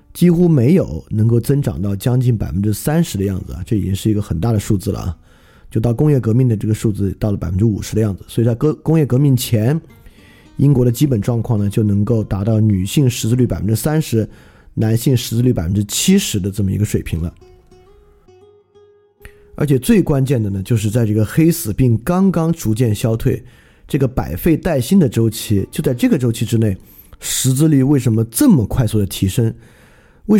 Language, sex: Chinese, male